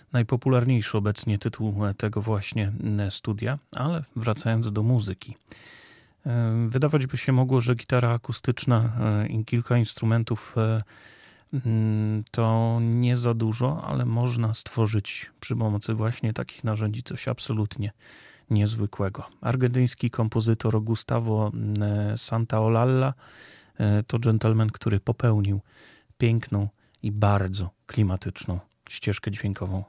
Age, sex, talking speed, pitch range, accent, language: 30-49, male, 100 wpm, 105-125 Hz, native, Polish